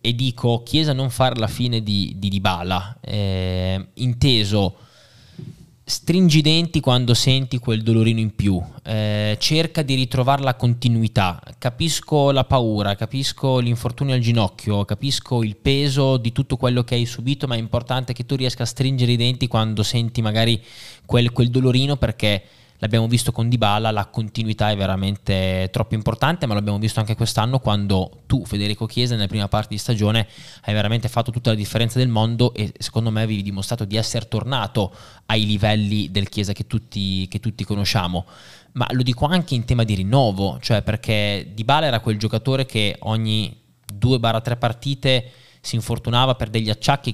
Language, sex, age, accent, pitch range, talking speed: Italian, male, 20-39, native, 105-125 Hz, 170 wpm